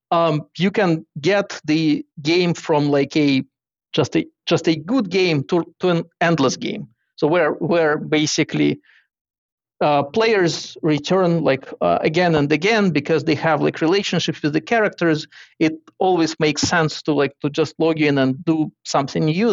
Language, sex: English, male